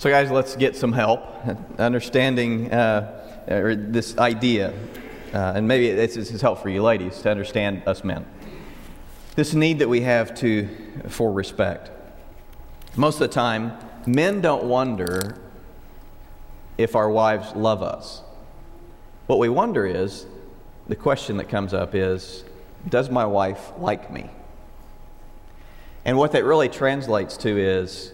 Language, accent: English, American